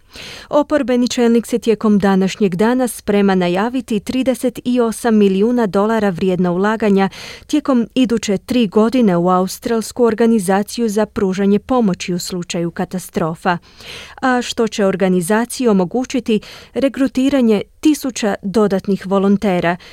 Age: 30-49